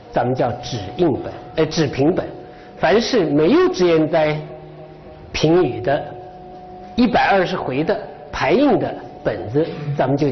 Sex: male